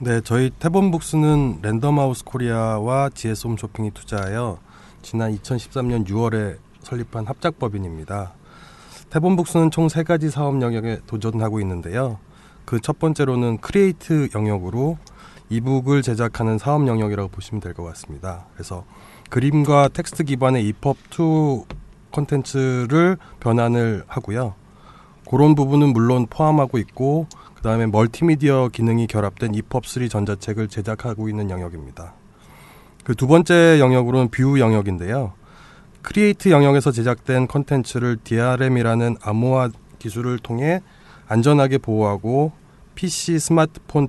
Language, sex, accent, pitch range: Korean, male, native, 110-145 Hz